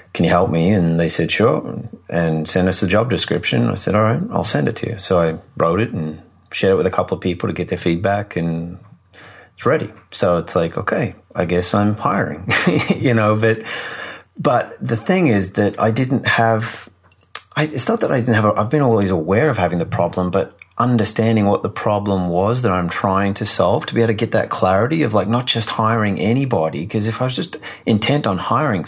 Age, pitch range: 30-49, 90-110 Hz